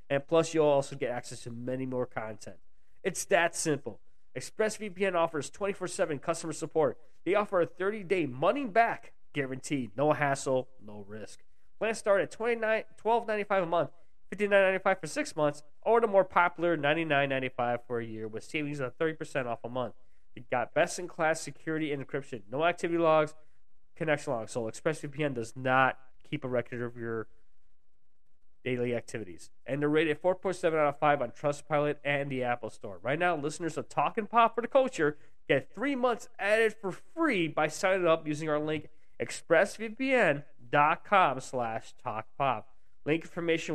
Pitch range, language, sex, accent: 125-170 Hz, English, male, American